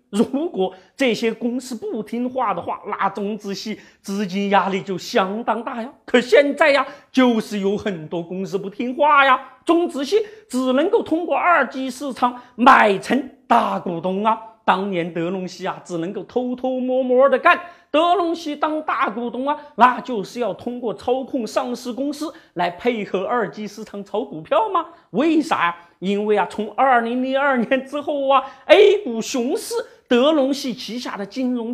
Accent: native